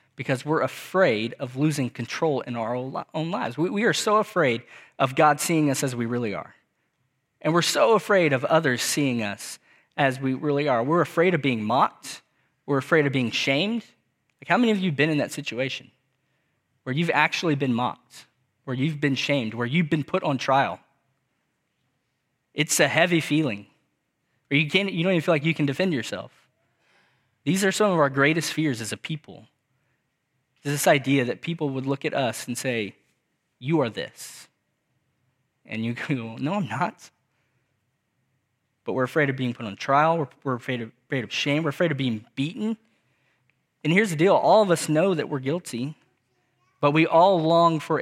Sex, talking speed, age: male, 185 wpm, 20-39